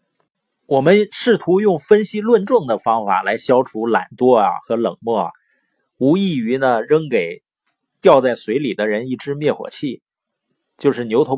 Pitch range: 125-185 Hz